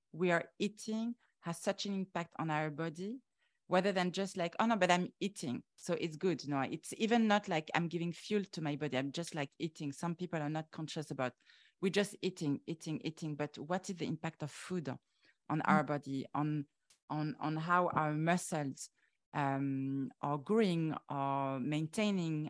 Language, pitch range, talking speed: English, 150-195 Hz, 185 wpm